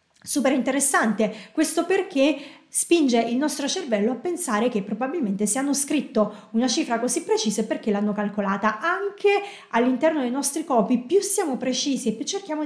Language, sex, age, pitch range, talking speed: Italian, female, 30-49, 220-280 Hz, 155 wpm